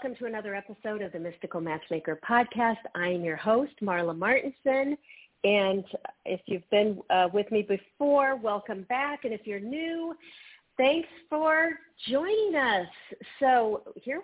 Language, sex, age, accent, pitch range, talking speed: English, female, 50-69, American, 175-240 Hz, 150 wpm